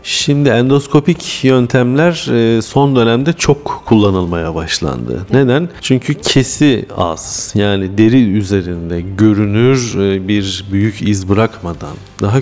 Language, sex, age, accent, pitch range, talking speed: Turkish, male, 40-59, native, 95-125 Hz, 100 wpm